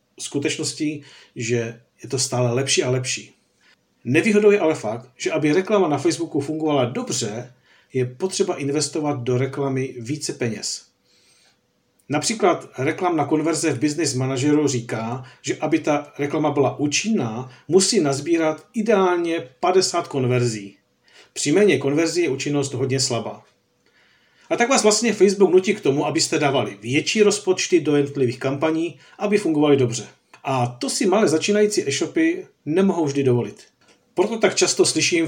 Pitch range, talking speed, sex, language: 135-180 Hz, 140 wpm, male, Czech